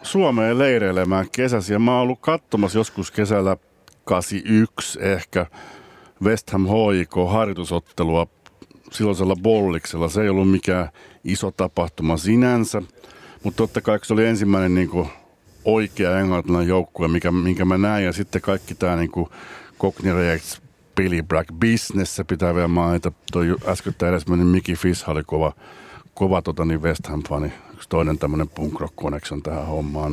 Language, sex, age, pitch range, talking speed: Finnish, male, 60-79, 85-105 Hz, 135 wpm